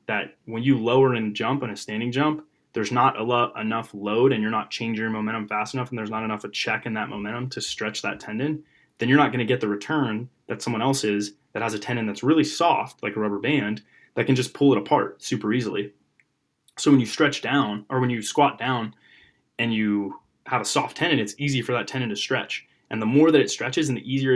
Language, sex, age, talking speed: English, male, 20-39, 240 wpm